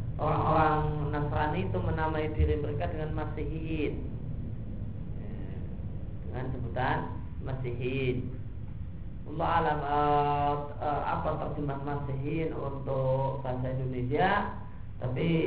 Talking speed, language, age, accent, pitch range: 80 wpm, Indonesian, 40-59, native, 100-150 Hz